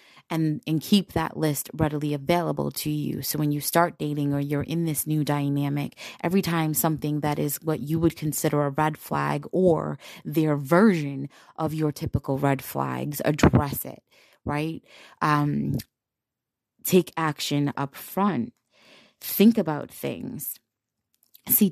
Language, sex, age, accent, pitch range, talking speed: English, female, 20-39, American, 145-170 Hz, 145 wpm